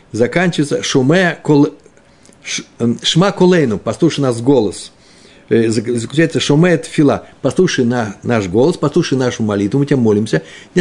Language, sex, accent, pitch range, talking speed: Russian, male, native, 115-165 Hz, 130 wpm